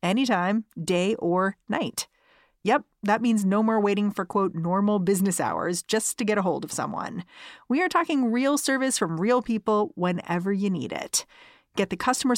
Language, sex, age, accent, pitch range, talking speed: English, female, 30-49, American, 180-225 Hz, 180 wpm